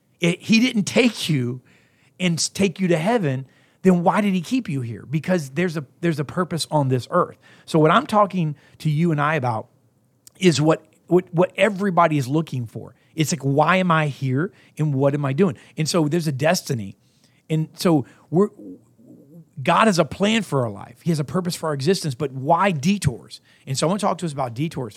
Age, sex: 40-59, male